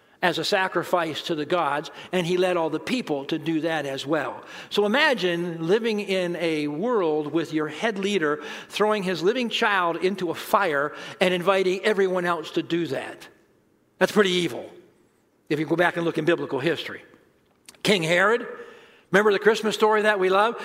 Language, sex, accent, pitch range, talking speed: English, male, American, 175-230 Hz, 180 wpm